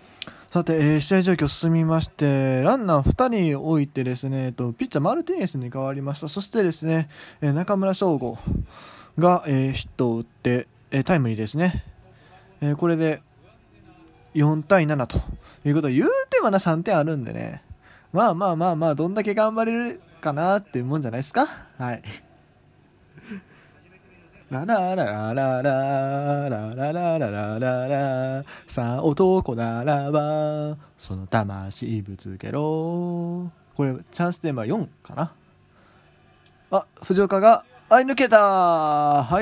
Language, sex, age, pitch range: Japanese, male, 20-39, 125-180 Hz